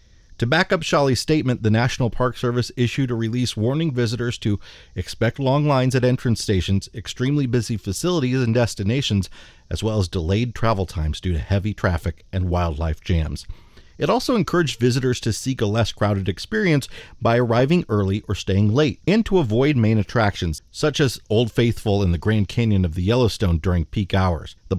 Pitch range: 95-125 Hz